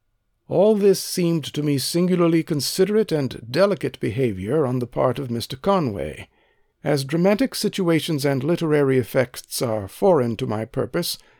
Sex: male